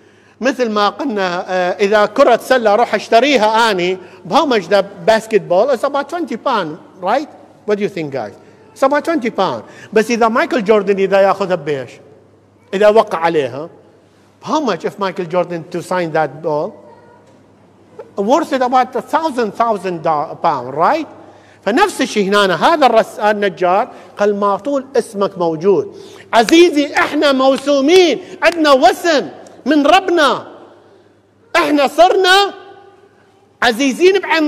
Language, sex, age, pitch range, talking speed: English, male, 50-69, 210-330 Hz, 95 wpm